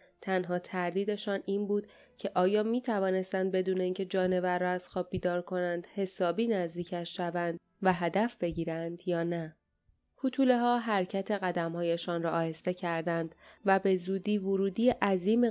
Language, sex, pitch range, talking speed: Persian, female, 180-215 Hz, 145 wpm